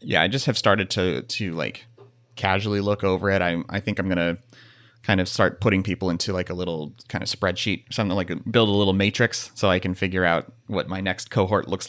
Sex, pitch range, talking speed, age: male, 90-115 Hz, 230 wpm, 30-49